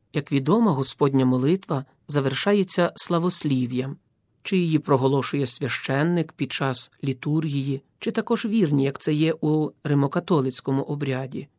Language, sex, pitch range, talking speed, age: Ukrainian, male, 135-175 Hz, 115 wpm, 40-59